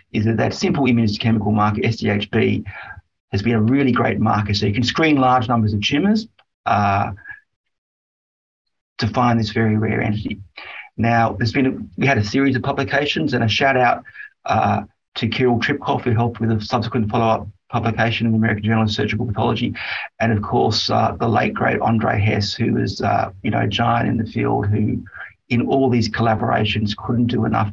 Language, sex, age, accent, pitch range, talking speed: English, male, 30-49, Australian, 105-125 Hz, 190 wpm